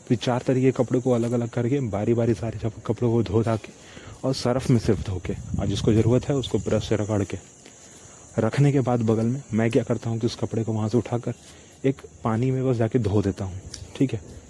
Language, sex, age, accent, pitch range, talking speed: Hindi, male, 30-49, native, 105-125 Hz, 240 wpm